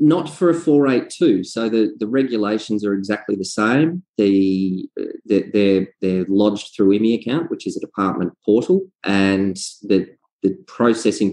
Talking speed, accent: 165 wpm, Australian